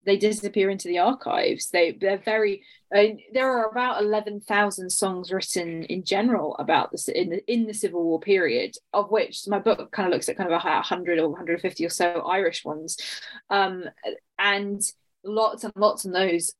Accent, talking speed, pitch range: British, 190 wpm, 175-220 Hz